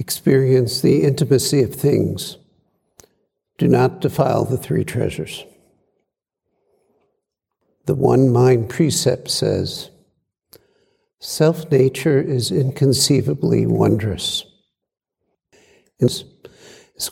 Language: English